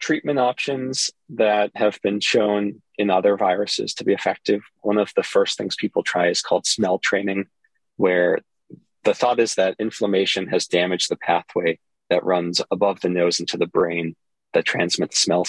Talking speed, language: 170 wpm, English